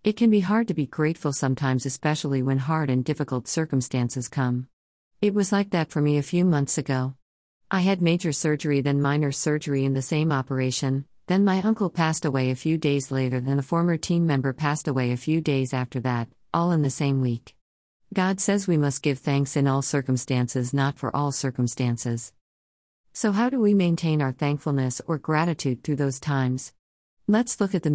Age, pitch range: 50-69, 130-160 Hz